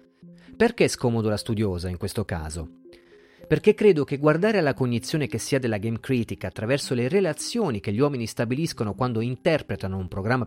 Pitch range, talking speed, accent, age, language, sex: 105-160 Hz, 170 wpm, native, 40-59, Italian, male